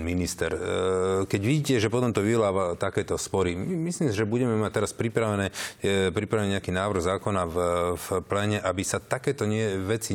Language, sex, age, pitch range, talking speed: Slovak, male, 40-59, 95-115 Hz, 160 wpm